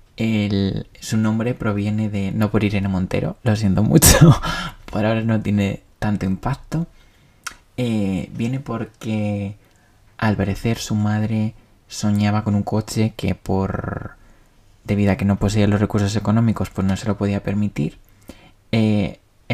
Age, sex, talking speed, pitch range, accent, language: 20-39, male, 140 wpm, 100-110 Hz, Spanish, Spanish